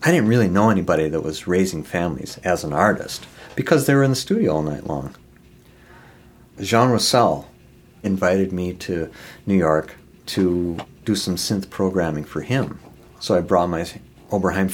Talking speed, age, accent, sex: 165 wpm, 50-69, American, male